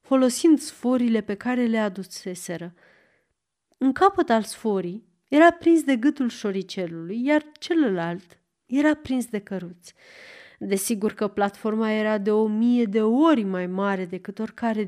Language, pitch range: Romanian, 200-285 Hz